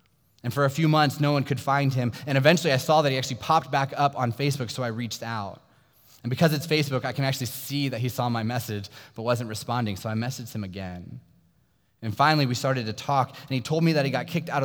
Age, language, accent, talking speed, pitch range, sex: 20-39, English, American, 255 wpm, 100-135 Hz, male